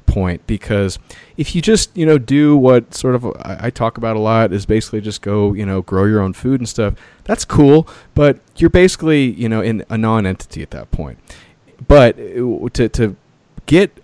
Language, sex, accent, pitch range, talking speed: English, male, American, 95-120 Hz, 195 wpm